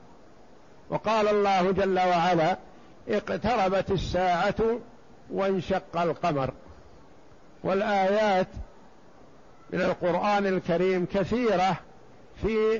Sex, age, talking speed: male, 60-79, 65 wpm